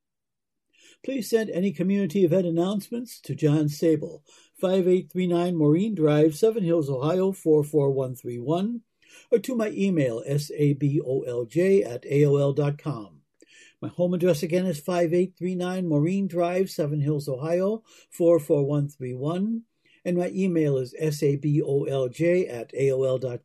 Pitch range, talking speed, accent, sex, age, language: 145-190 Hz, 105 wpm, American, male, 60-79, English